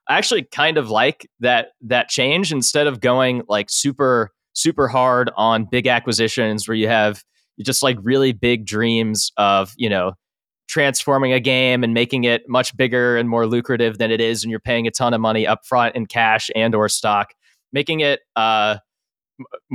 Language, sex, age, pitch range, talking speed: English, male, 20-39, 110-130 Hz, 180 wpm